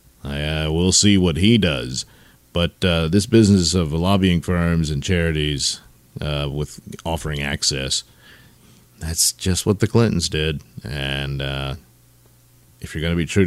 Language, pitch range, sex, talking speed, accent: English, 85-130 Hz, male, 150 wpm, American